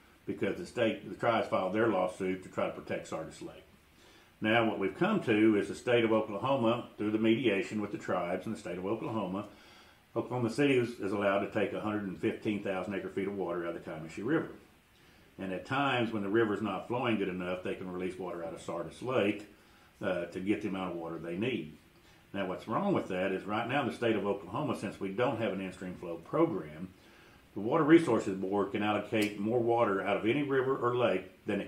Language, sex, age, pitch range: English, male, 50-69, 95-110 Hz